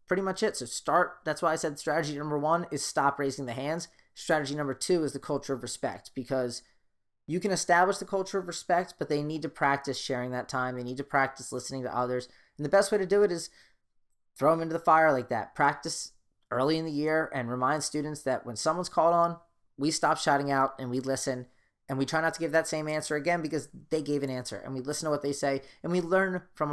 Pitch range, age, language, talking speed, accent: 125-155 Hz, 30-49, English, 240 wpm, American